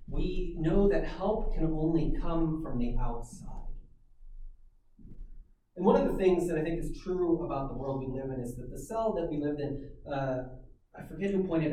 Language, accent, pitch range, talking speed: English, American, 115-160 Hz, 200 wpm